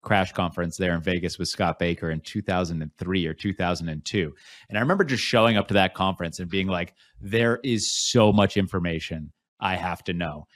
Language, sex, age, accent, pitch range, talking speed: English, male, 30-49, American, 95-115 Hz, 190 wpm